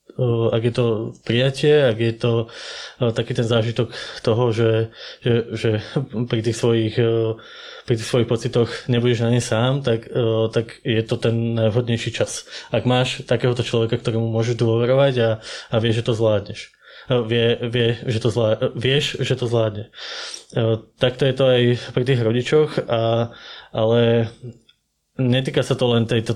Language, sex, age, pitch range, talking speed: Slovak, male, 20-39, 115-125 Hz, 130 wpm